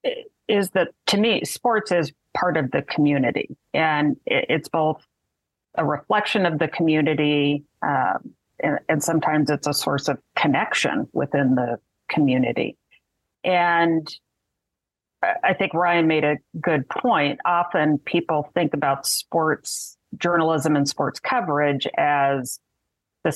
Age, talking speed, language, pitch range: 40-59, 125 wpm, English, 140-175 Hz